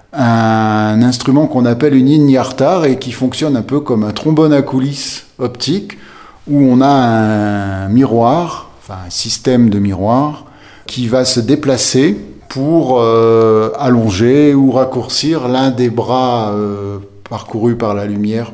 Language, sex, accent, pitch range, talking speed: French, male, French, 105-130 Hz, 140 wpm